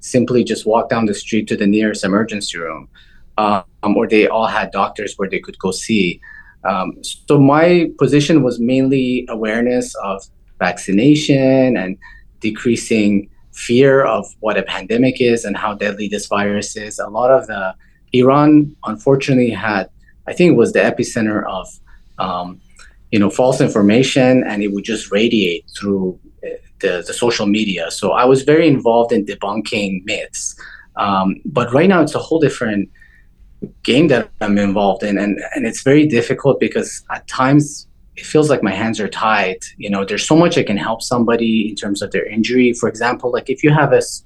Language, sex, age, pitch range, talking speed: English, male, 30-49, 105-135 Hz, 180 wpm